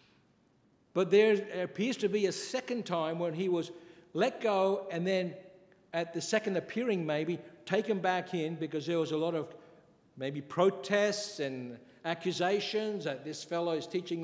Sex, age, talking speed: male, 60-79, 160 wpm